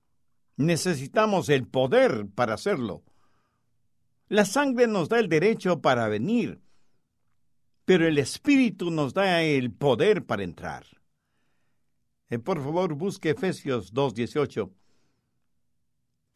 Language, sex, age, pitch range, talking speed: English, male, 60-79, 115-170 Hz, 105 wpm